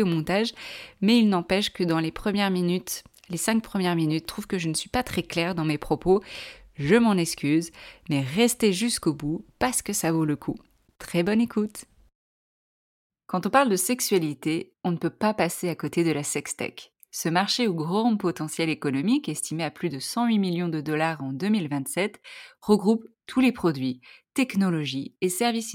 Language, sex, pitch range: French, female, 160-220 Hz